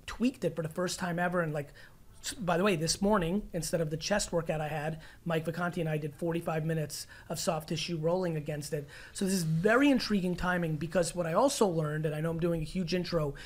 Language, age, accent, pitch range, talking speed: English, 30-49, American, 160-185 Hz, 235 wpm